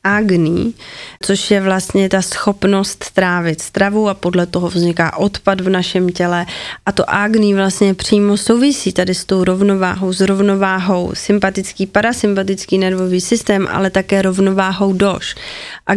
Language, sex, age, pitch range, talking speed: Slovak, female, 20-39, 190-205 Hz, 140 wpm